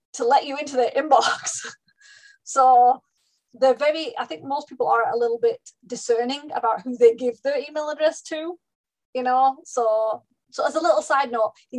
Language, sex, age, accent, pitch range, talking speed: English, female, 20-39, British, 240-325 Hz, 185 wpm